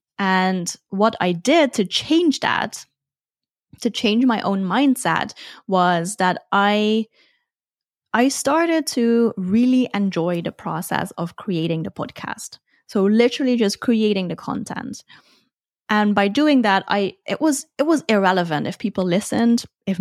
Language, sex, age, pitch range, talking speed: English, female, 20-39, 185-245 Hz, 140 wpm